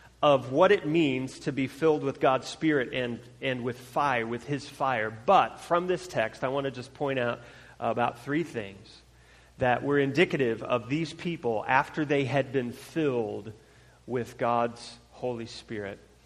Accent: American